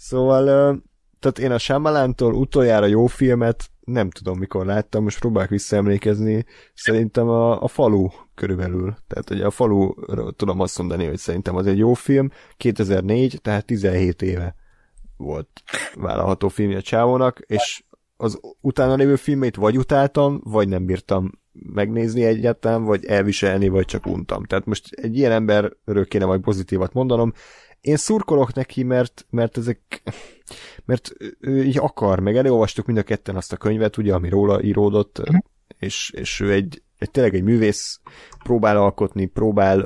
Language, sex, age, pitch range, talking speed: Hungarian, male, 30-49, 95-115 Hz, 150 wpm